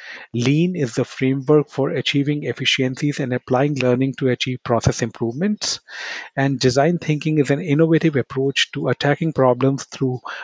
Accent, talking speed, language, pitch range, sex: Indian, 145 wpm, English, 130-150 Hz, male